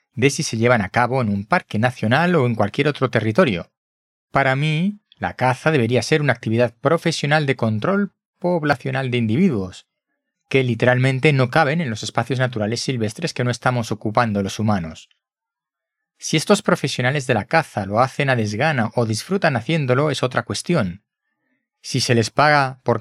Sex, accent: male, Spanish